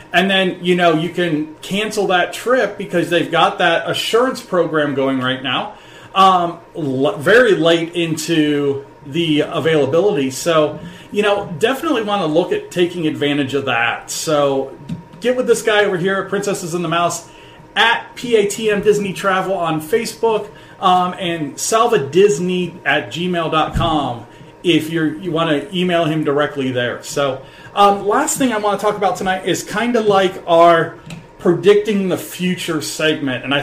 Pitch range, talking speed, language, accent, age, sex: 160-205 Hz, 155 wpm, English, American, 30-49, male